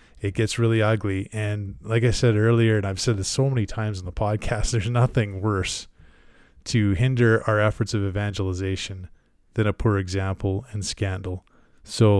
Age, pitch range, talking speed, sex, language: 20-39, 100-120 Hz, 170 wpm, male, English